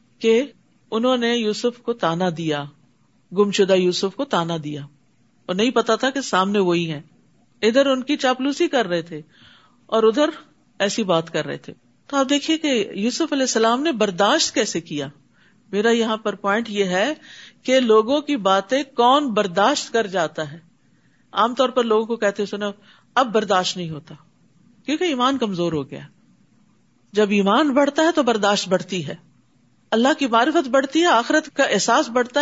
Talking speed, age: 175 wpm, 50-69